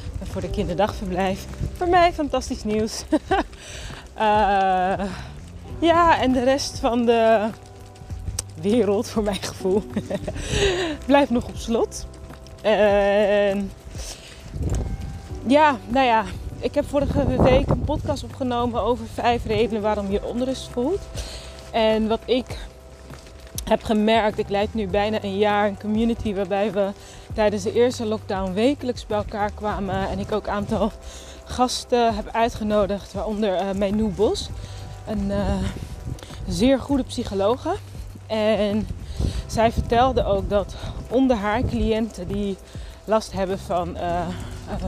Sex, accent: female, Dutch